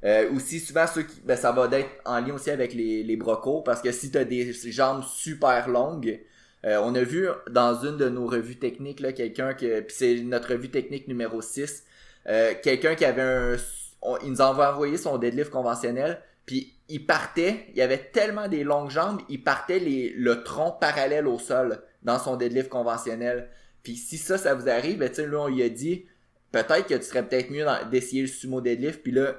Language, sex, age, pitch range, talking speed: French, male, 20-39, 120-140 Hz, 210 wpm